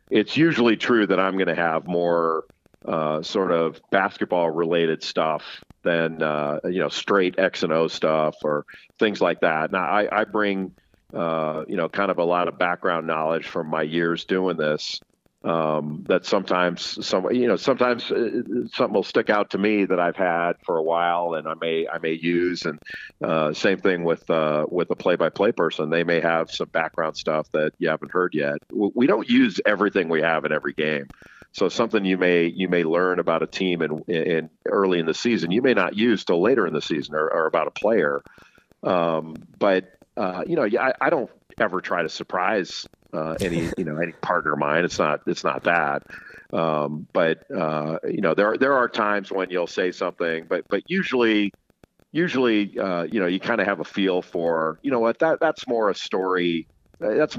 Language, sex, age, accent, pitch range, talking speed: English, male, 50-69, American, 80-105 Hz, 205 wpm